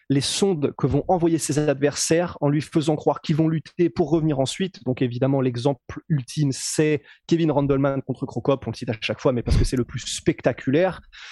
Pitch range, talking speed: 130-160 Hz, 205 wpm